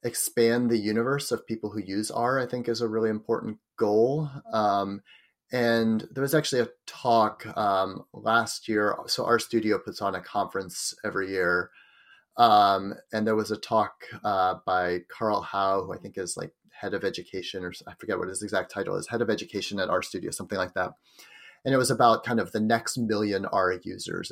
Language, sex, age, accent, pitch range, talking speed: English, male, 30-49, American, 105-120 Hz, 190 wpm